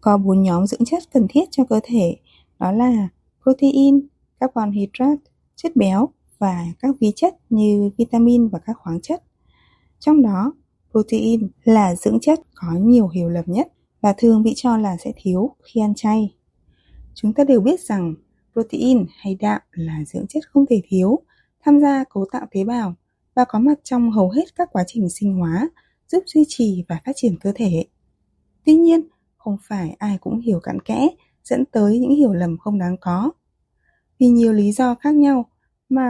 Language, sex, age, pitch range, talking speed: Vietnamese, female, 20-39, 195-270 Hz, 185 wpm